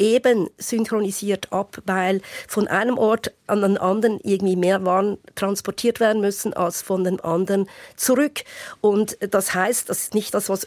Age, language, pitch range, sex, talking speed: 50-69, German, 185-225 Hz, female, 165 wpm